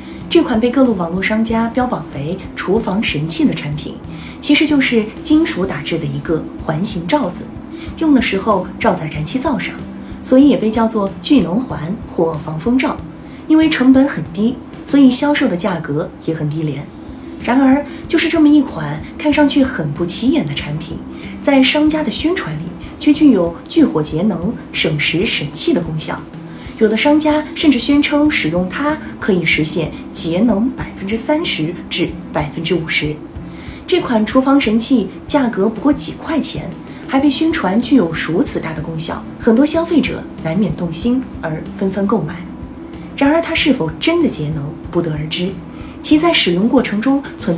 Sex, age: female, 20-39